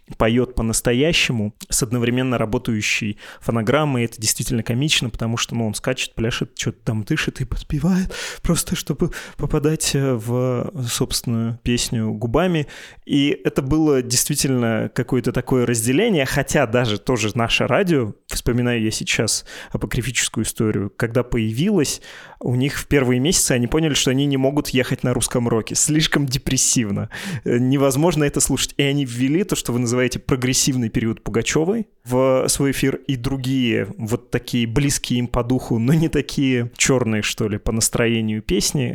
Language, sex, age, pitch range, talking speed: Russian, male, 20-39, 115-140 Hz, 150 wpm